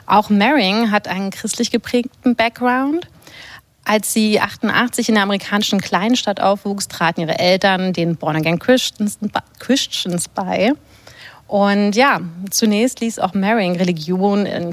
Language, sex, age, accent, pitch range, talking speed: German, female, 30-49, German, 180-225 Hz, 125 wpm